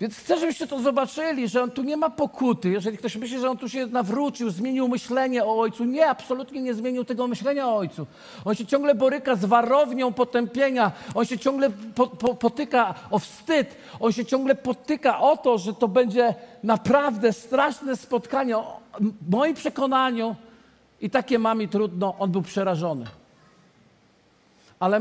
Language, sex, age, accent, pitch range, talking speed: Polish, male, 50-69, native, 195-255 Hz, 165 wpm